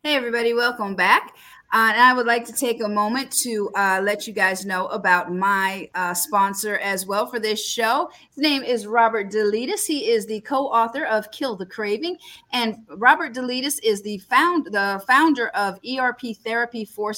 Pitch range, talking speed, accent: 200-260 Hz, 185 wpm, American